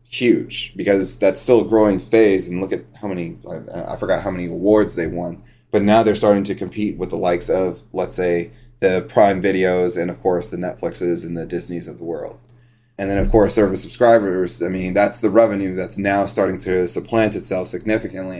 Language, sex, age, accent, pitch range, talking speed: English, male, 30-49, American, 95-115 Hz, 205 wpm